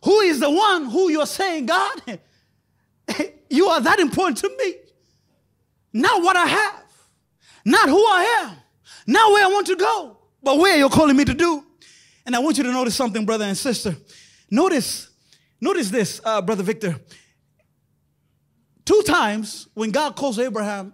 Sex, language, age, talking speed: male, English, 30-49, 165 wpm